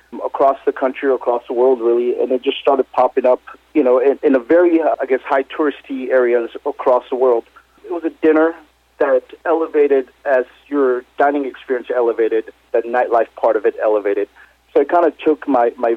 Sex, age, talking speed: male, 40-59, 195 wpm